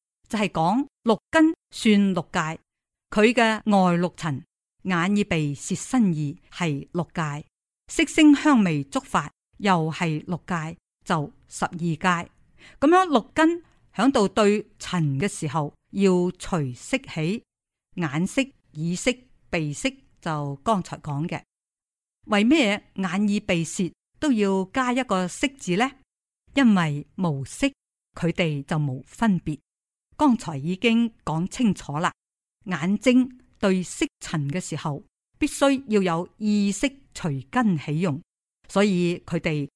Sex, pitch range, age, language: female, 160-225 Hz, 50-69, Chinese